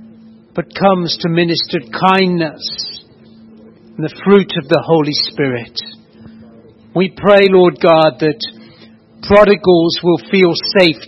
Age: 60-79